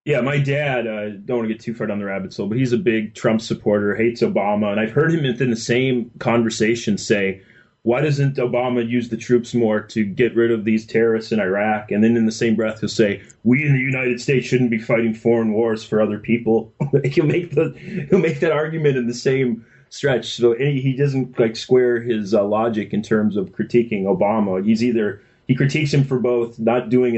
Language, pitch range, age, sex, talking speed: English, 110-135 Hz, 20-39, male, 225 wpm